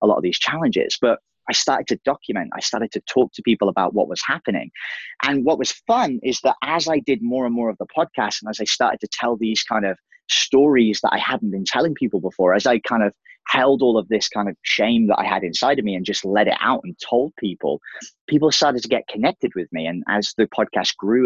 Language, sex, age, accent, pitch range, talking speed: English, male, 30-49, British, 105-135 Hz, 250 wpm